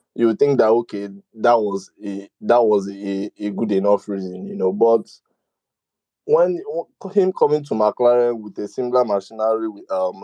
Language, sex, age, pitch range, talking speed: English, male, 20-39, 100-130 Hz, 170 wpm